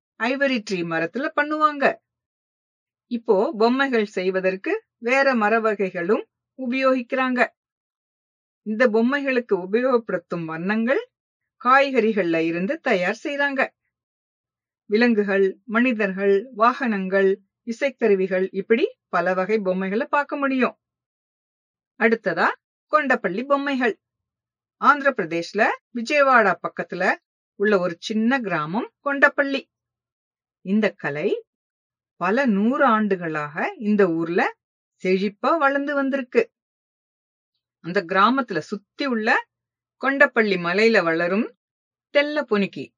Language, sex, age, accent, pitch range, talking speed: English, female, 50-69, Indian, 185-260 Hz, 80 wpm